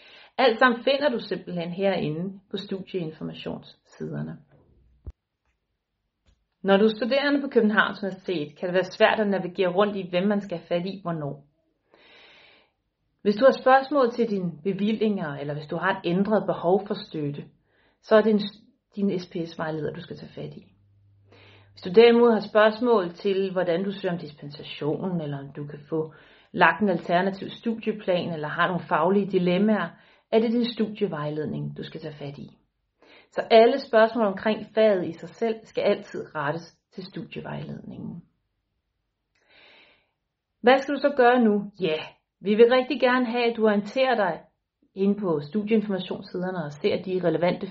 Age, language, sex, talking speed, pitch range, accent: 40-59, Danish, female, 160 wpm, 165-220 Hz, native